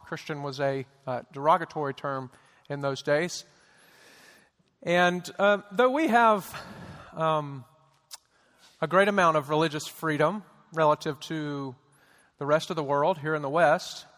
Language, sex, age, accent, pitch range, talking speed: English, male, 40-59, American, 150-185 Hz, 135 wpm